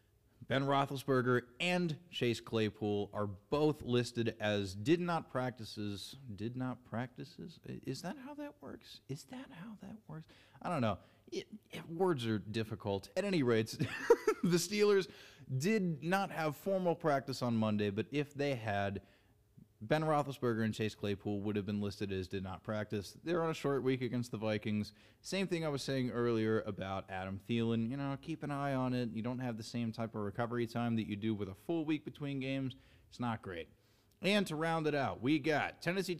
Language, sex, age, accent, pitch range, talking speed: English, male, 30-49, American, 110-155 Hz, 185 wpm